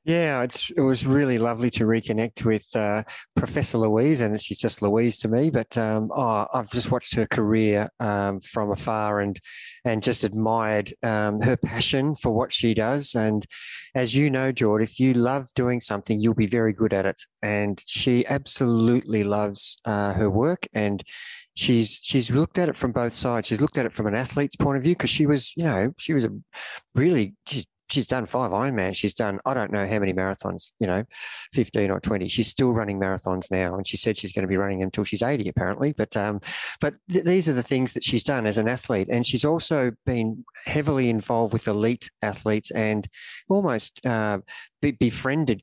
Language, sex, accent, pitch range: English, male, Australian, 105-130 Hz